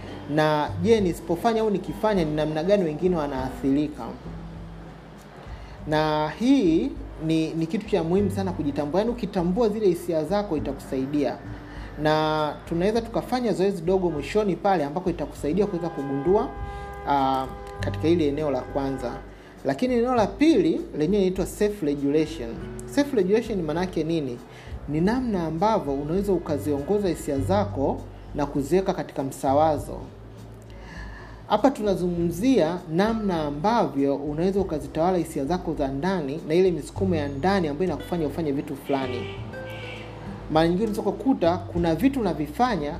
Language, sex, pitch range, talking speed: Swahili, male, 135-190 Hz, 135 wpm